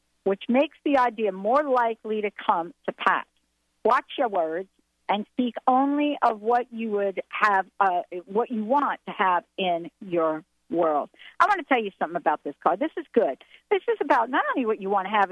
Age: 50-69